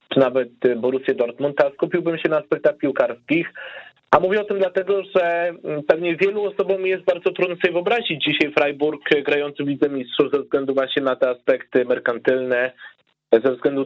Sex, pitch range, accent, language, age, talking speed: male, 140-190 Hz, native, Polish, 30-49, 165 wpm